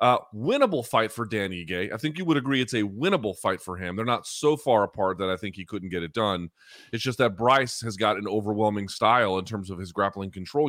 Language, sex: English, male